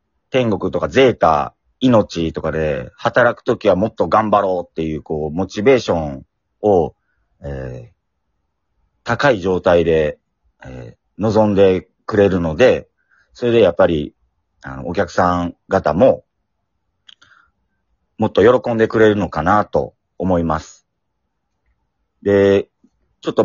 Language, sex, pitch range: Japanese, male, 80-120 Hz